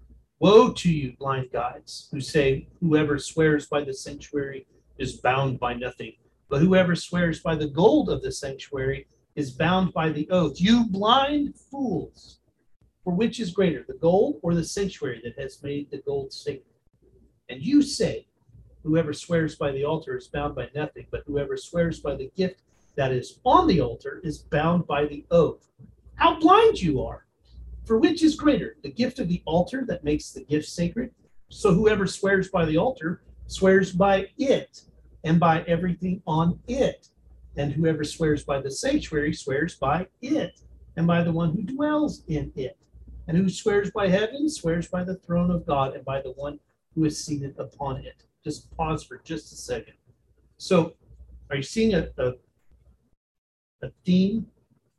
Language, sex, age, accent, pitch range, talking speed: English, male, 40-59, American, 140-195 Hz, 175 wpm